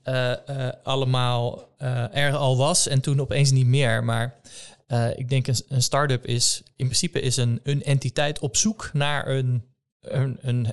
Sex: male